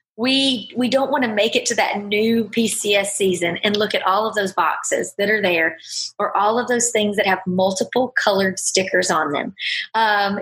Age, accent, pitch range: 30-49, American, 190-240 Hz